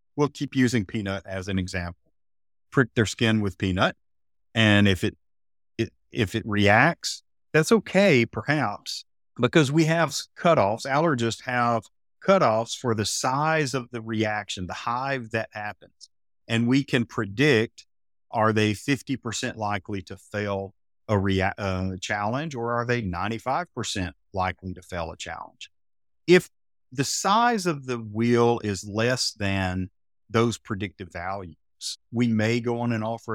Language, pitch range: English, 95-125 Hz